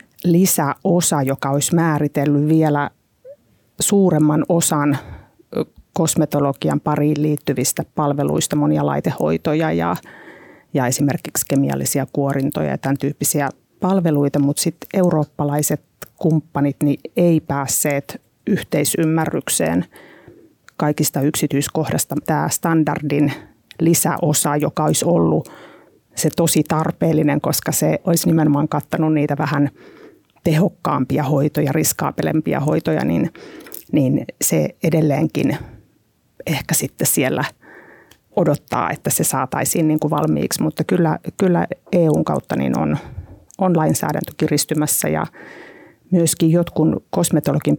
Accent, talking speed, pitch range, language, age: native, 95 wpm, 145-165 Hz, Finnish, 30-49